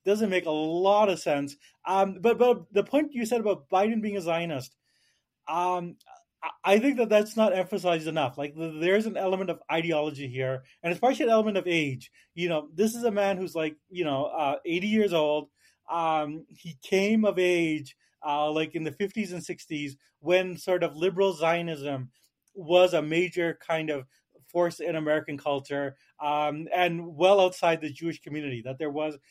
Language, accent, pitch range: English, American, 145-185 Hz